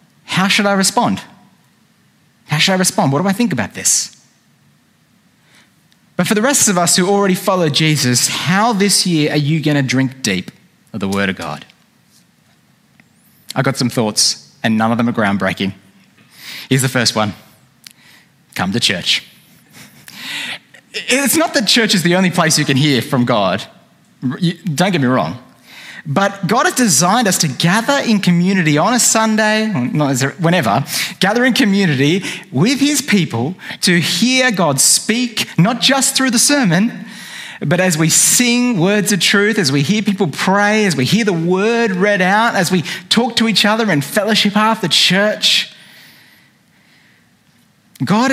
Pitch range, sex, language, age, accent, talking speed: 155-220 Hz, male, English, 30-49, Australian, 165 wpm